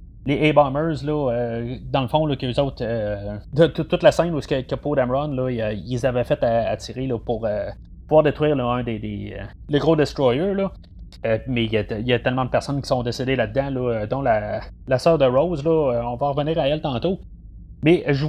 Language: French